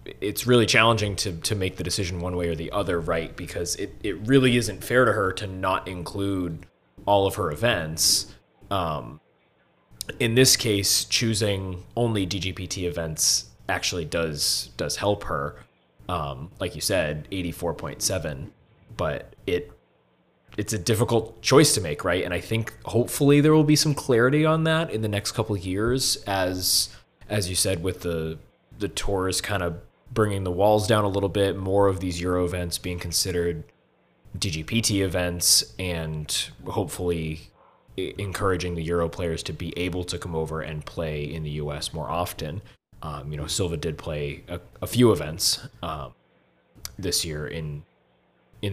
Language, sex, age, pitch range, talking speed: English, male, 20-39, 85-105 Hz, 170 wpm